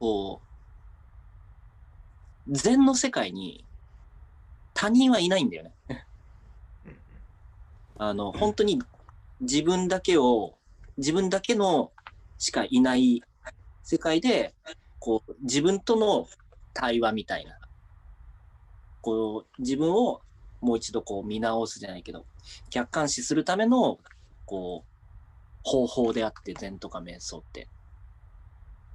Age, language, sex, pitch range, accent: 40-59, English, male, 90-140 Hz, Japanese